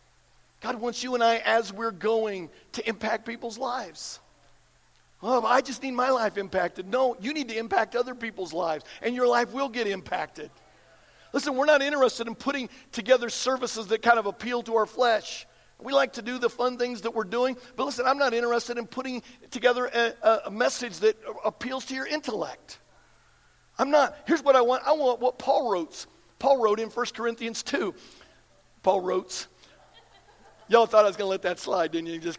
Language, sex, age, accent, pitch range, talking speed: English, male, 50-69, American, 225-260 Hz, 195 wpm